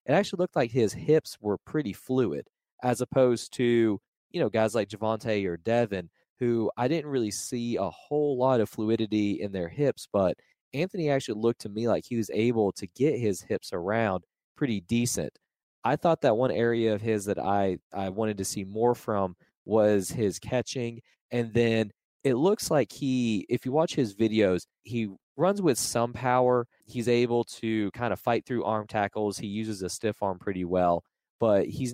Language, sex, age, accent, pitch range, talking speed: English, male, 20-39, American, 105-120 Hz, 190 wpm